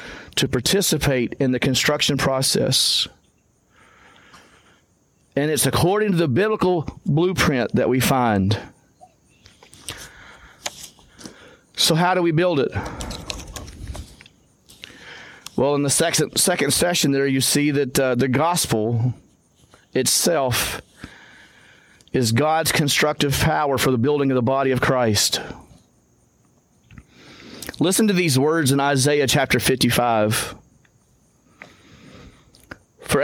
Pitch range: 135-190 Hz